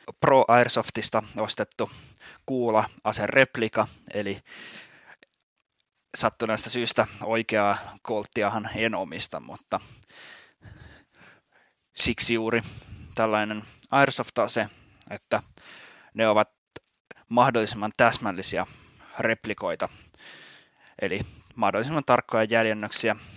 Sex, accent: male, native